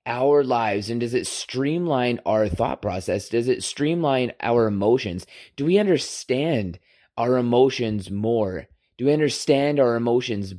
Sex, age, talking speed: male, 30-49, 140 wpm